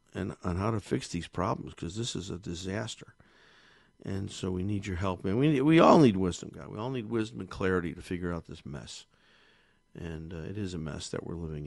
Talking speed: 235 wpm